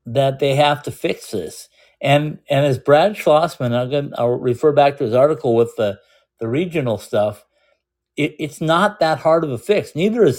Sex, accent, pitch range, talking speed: male, American, 120-155 Hz, 190 wpm